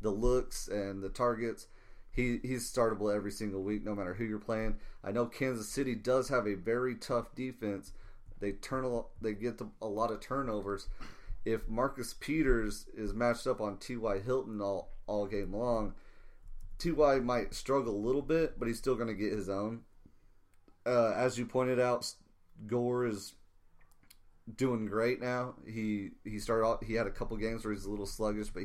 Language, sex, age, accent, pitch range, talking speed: English, male, 30-49, American, 100-120 Hz, 180 wpm